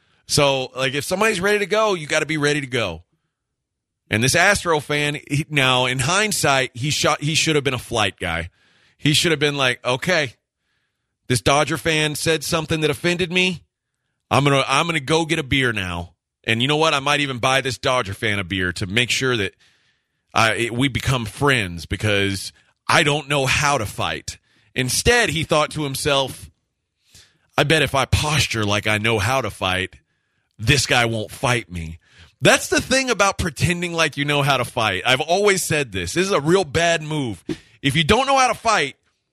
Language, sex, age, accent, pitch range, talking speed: English, male, 30-49, American, 120-170 Hz, 200 wpm